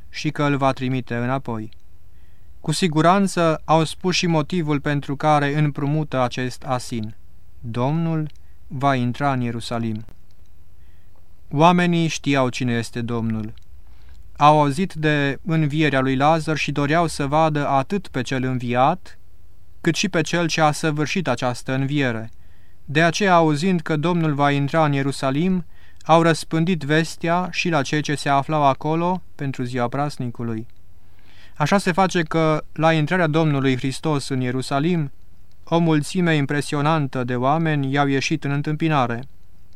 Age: 30-49